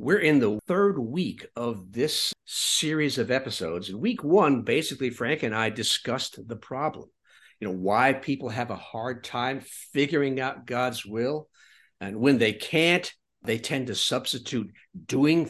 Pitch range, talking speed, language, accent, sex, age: 115-155 Hz, 160 wpm, English, American, male, 60-79